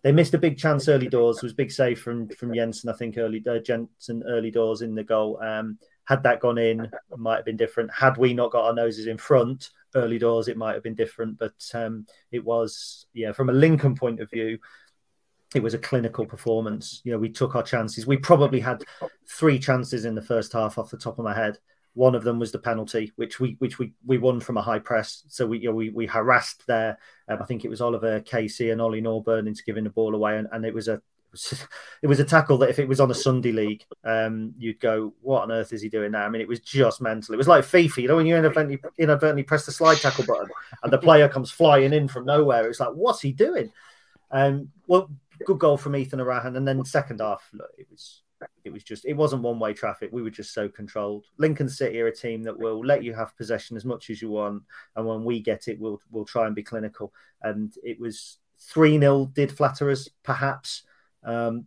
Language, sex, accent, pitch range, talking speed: English, male, British, 110-135 Hz, 240 wpm